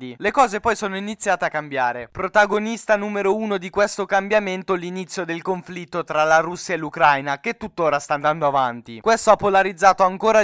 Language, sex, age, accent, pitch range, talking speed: Italian, male, 20-39, native, 175-215 Hz, 170 wpm